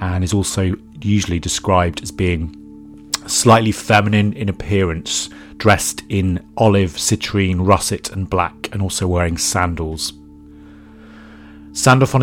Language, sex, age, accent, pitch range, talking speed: English, male, 40-59, British, 80-100 Hz, 115 wpm